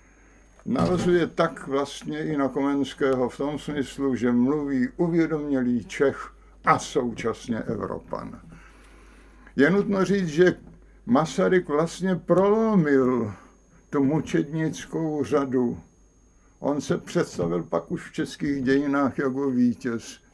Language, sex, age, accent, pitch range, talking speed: Czech, male, 60-79, native, 135-175 Hz, 105 wpm